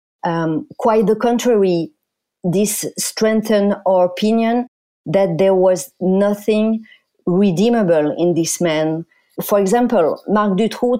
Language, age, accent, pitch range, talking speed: English, 40-59, French, 175-220 Hz, 110 wpm